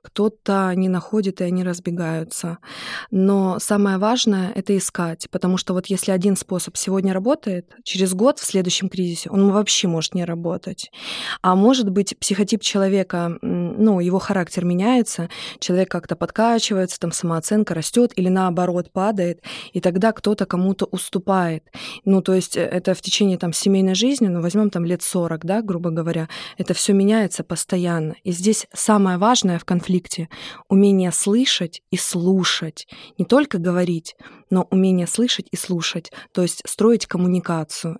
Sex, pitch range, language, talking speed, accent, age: female, 175-205 Hz, Russian, 150 wpm, native, 20-39